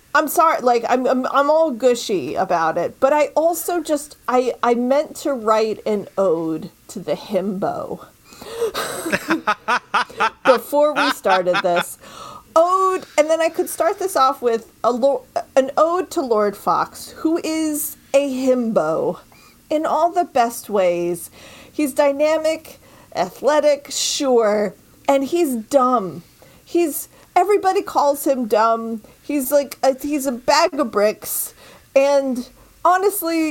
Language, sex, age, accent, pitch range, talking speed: English, female, 40-59, American, 205-295 Hz, 135 wpm